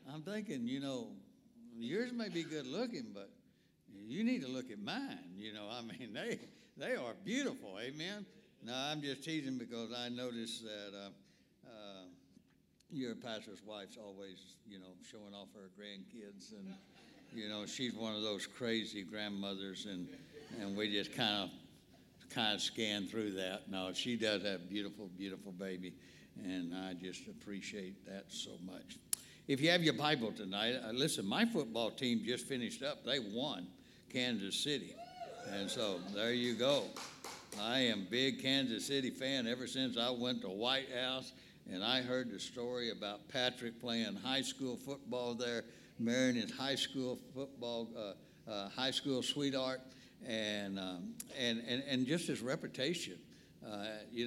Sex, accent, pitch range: male, American, 105-140 Hz